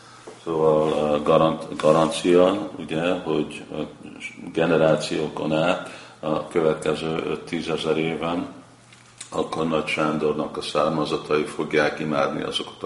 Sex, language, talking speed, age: male, Hungarian, 85 wpm, 50-69